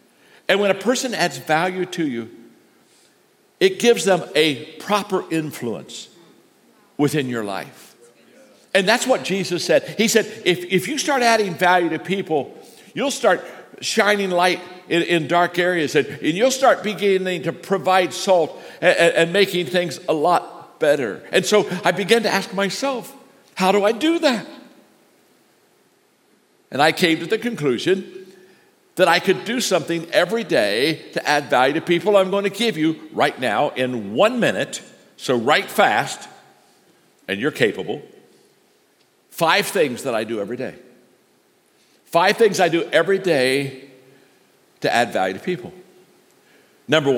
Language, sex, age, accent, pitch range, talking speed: German, male, 60-79, American, 160-210 Hz, 155 wpm